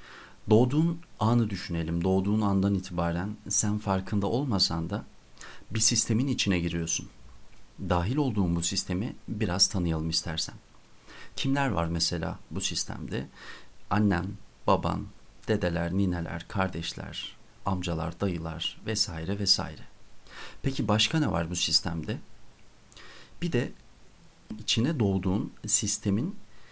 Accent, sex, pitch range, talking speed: native, male, 85-110 Hz, 105 wpm